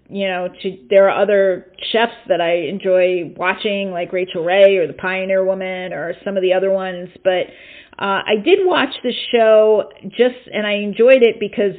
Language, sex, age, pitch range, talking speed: English, female, 40-59, 185-220 Hz, 190 wpm